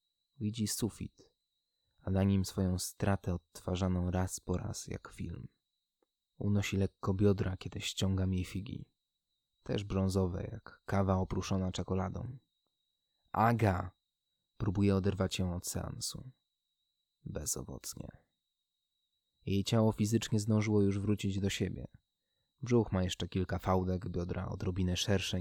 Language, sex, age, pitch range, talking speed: Polish, male, 20-39, 90-100 Hz, 115 wpm